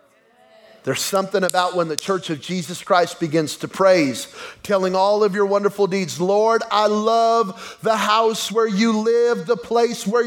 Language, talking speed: English, 170 wpm